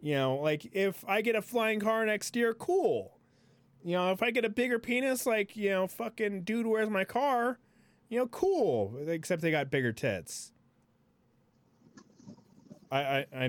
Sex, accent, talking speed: male, American, 175 wpm